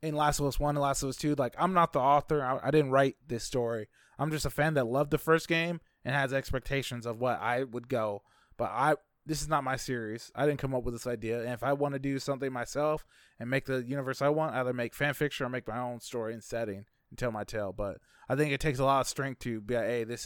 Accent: American